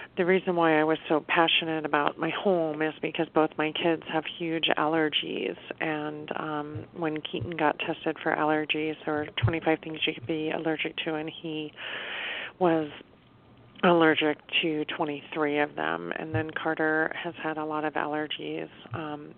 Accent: American